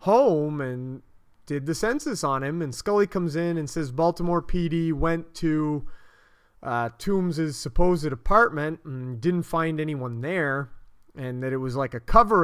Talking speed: 160 wpm